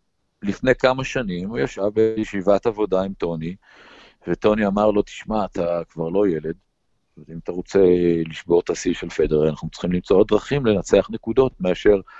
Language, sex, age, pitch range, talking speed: Hebrew, male, 50-69, 95-140 Hz, 160 wpm